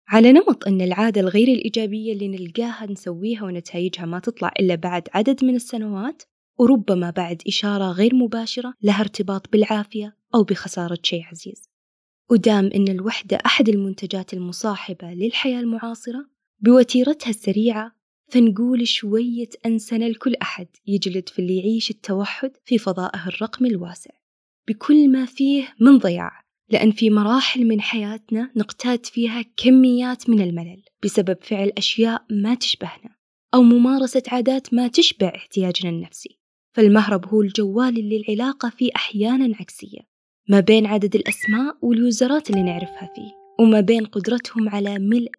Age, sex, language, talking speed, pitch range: 20-39, female, Arabic, 135 wpm, 195-240 Hz